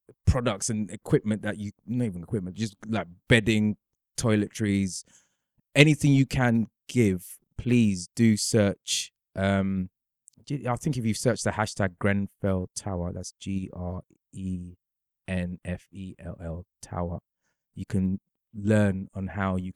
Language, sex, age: English, male, 20-39